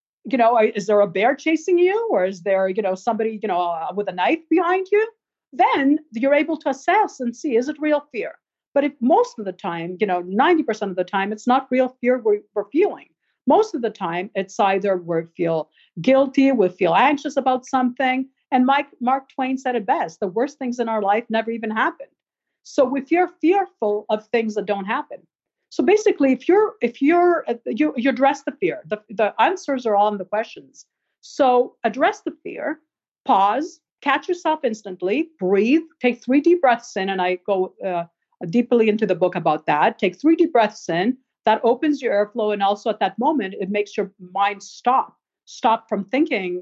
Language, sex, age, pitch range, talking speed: English, female, 50-69, 200-290 Hz, 200 wpm